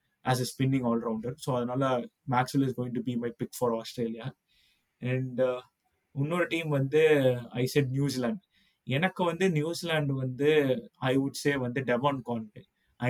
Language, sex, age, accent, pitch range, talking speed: Tamil, male, 20-39, native, 125-145 Hz, 160 wpm